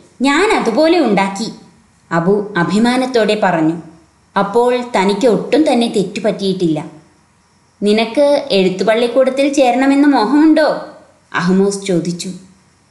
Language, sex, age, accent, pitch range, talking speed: Malayalam, female, 20-39, native, 200-310 Hz, 75 wpm